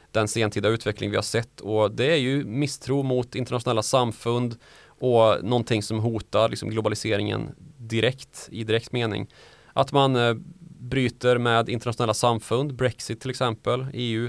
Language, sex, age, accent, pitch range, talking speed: Swedish, male, 20-39, native, 110-125 Hz, 140 wpm